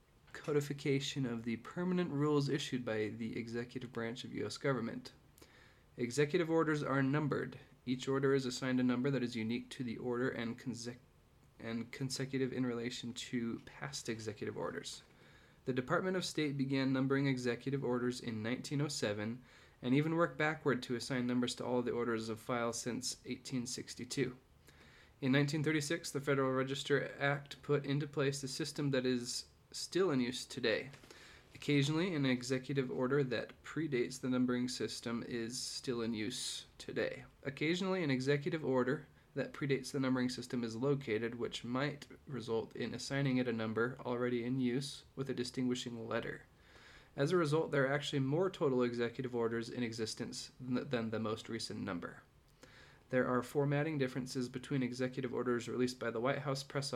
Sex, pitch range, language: male, 120-140 Hz, English